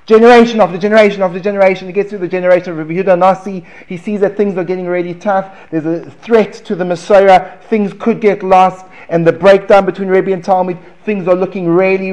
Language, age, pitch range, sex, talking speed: English, 30-49, 175-210 Hz, male, 215 wpm